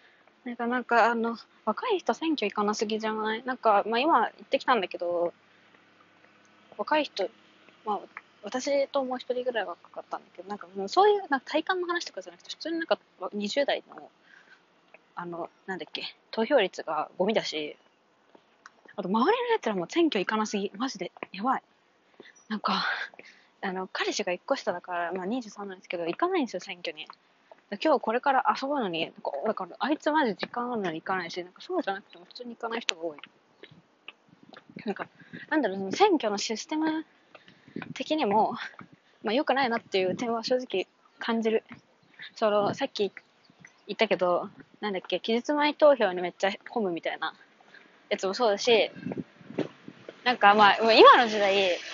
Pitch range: 195-275 Hz